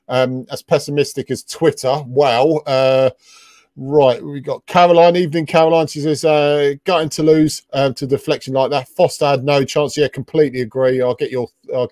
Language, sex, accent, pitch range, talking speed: English, male, British, 135-155 Hz, 190 wpm